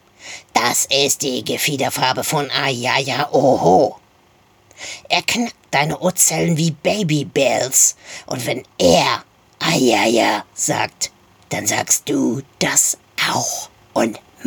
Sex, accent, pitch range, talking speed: female, German, 110-155 Hz, 120 wpm